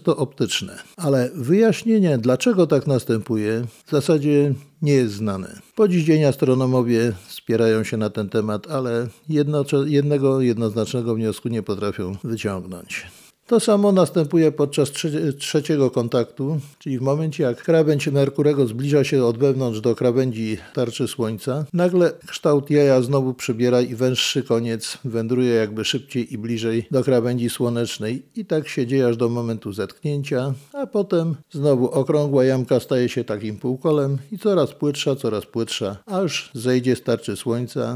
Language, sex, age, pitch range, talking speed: Polish, male, 50-69, 120-150 Hz, 145 wpm